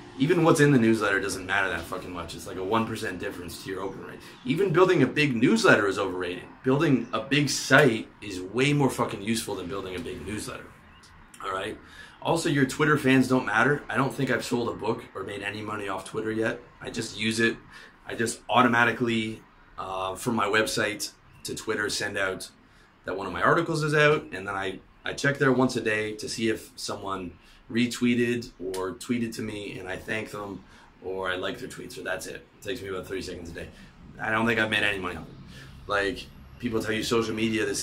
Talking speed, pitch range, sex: 220 wpm, 95-130 Hz, male